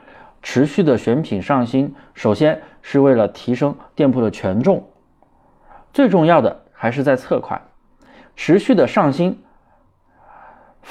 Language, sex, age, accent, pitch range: Chinese, male, 20-39, native, 110-145 Hz